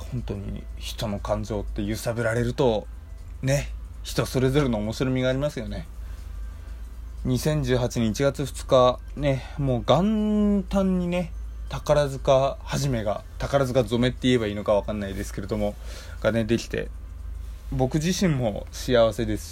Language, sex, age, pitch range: Japanese, male, 20-39, 100-135 Hz